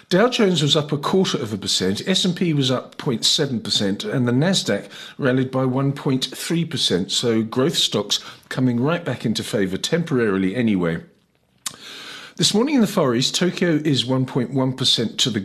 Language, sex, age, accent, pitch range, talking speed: English, male, 50-69, British, 110-160 Hz, 155 wpm